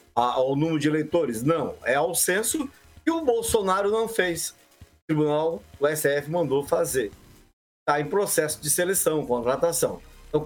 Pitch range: 165-245 Hz